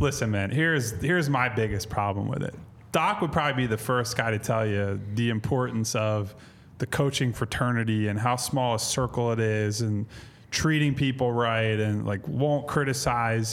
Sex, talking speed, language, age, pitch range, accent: male, 175 wpm, English, 20-39, 110-140 Hz, American